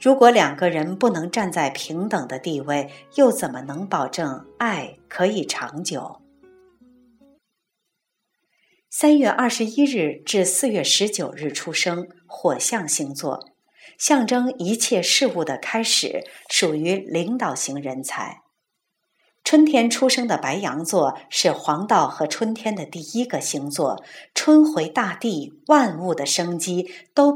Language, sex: Chinese, female